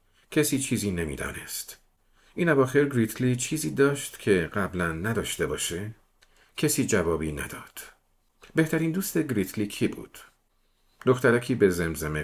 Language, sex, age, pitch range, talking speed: Persian, male, 50-69, 85-120 Hz, 120 wpm